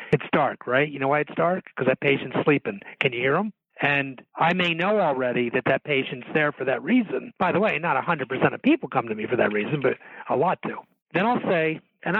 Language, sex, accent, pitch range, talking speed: English, male, American, 130-175 Hz, 240 wpm